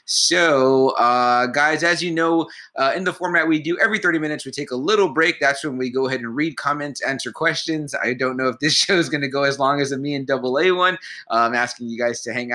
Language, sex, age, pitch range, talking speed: English, male, 20-39, 120-160 Hz, 270 wpm